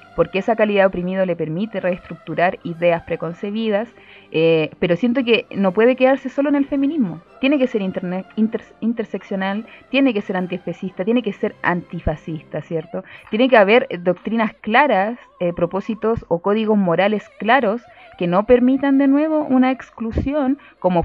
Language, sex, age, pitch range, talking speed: Spanish, female, 20-39, 190-245 Hz, 155 wpm